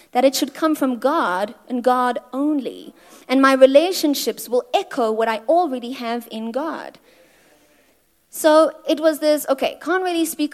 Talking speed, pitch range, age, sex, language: 160 wpm, 235-300 Hz, 30-49, female, English